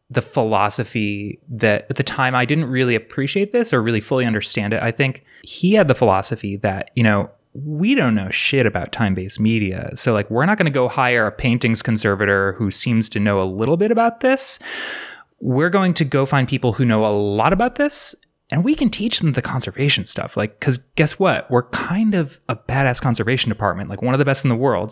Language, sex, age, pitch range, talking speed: English, male, 20-39, 105-135 Hz, 220 wpm